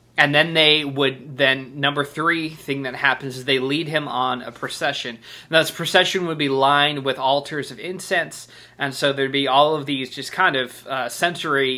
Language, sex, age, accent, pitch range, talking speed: English, male, 20-39, American, 130-155 Hz, 200 wpm